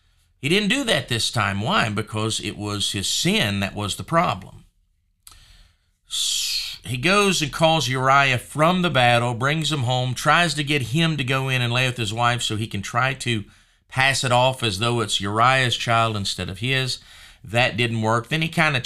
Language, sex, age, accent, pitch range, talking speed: English, male, 40-59, American, 100-135 Hz, 195 wpm